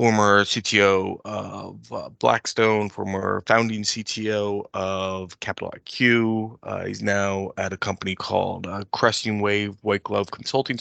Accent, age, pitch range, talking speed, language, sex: American, 20-39, 95-105 Hz, 130 wpm, English, male